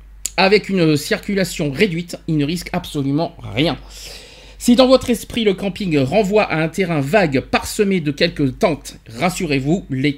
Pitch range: 150-225 Hz